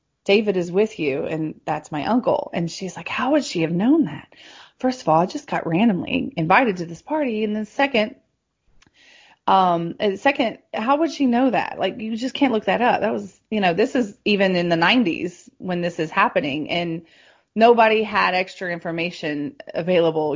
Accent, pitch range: American, 170-225 Hz